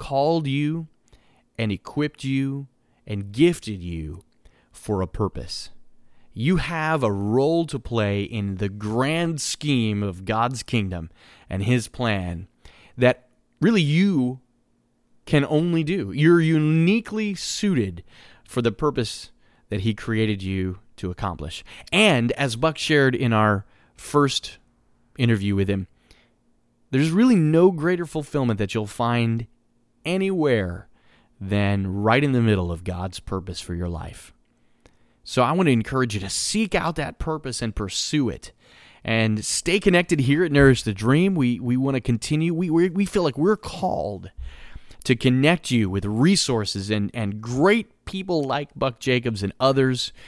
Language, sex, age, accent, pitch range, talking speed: English, male, 30-49, American, 105-150 Hz, 145 wpm